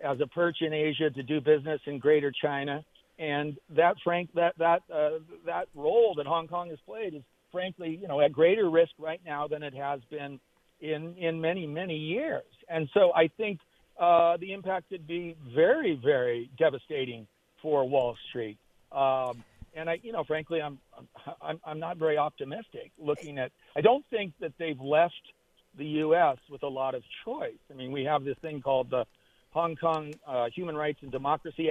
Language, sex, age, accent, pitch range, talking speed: English, male, 50-69, American, 140-165 Hz, 185 wpm